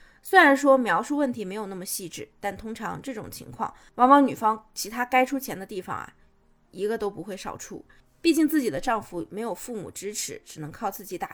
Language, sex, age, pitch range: Chinese, female, 20-39, 205-285 Hz